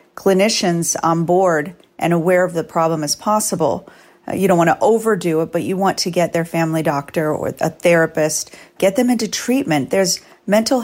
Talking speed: 185 wpm